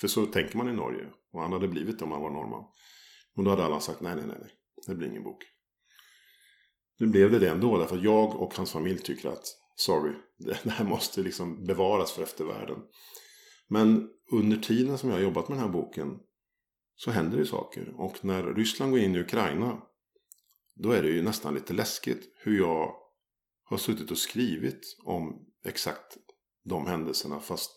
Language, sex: Swedish, male